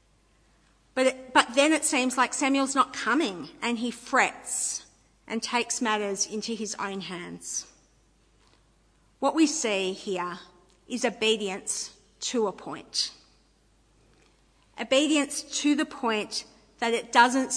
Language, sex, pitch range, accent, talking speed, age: English, female, 195-250 Hz, Australian, 120 wpm, 50-69